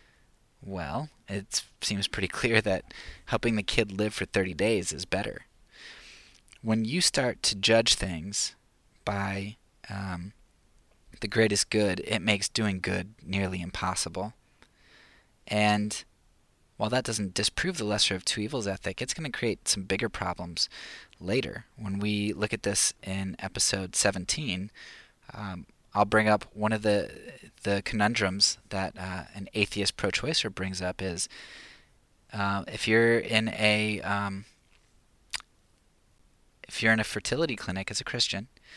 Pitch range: 95-110 Hz